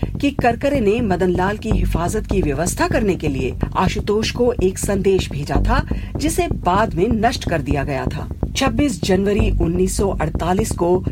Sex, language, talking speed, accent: female, Hindi, 155 wpm, native